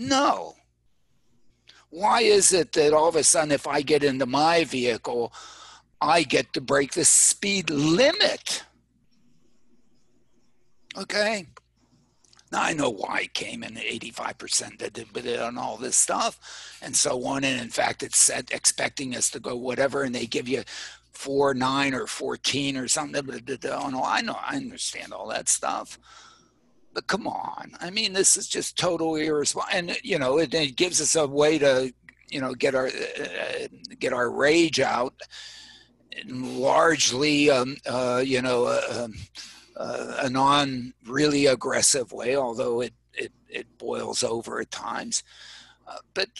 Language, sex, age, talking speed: English, male, 60-79, 155 wpm